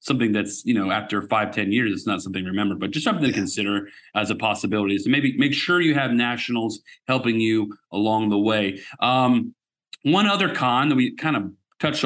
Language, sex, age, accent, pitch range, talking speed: English, male, 40-59, American, 120-165 Hz, 210 wpm